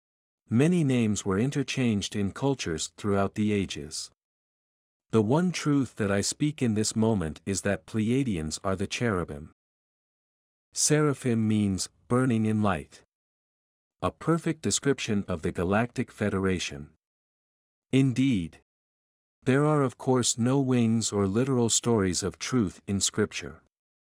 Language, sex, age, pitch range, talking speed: English, male, 50-69, 90-125 Hz, 125 wpm